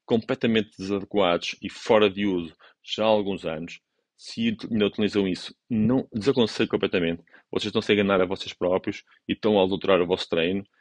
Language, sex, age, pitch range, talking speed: Portuguese, male, 30-49, 95-120 Hz, 165 wpm